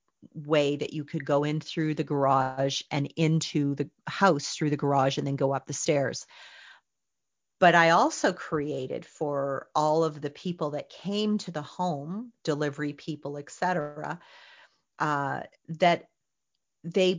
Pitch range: 150-180 Hz